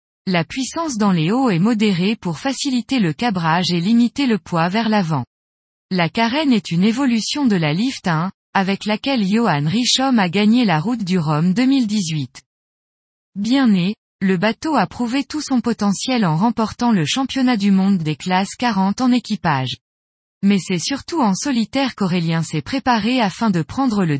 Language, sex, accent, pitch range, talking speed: French, female, French, 180-245 Hz, 170 wpm